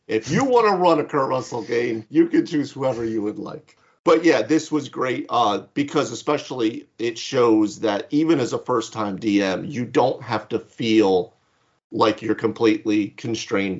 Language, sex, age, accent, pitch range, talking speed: English, male, 40-59, American, 110-155 Hz, 180 wpm